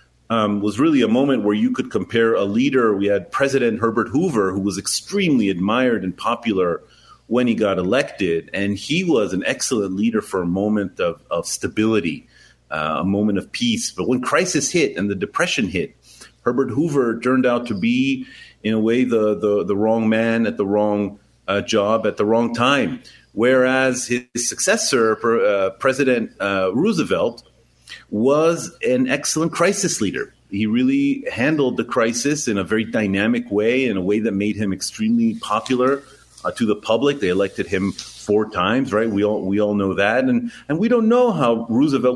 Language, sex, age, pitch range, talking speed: English, male, 30-49, 105-145 Hz, 180 wpm